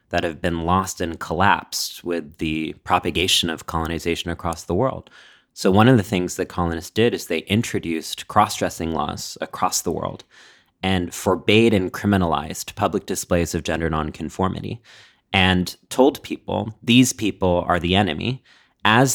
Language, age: English, 30-49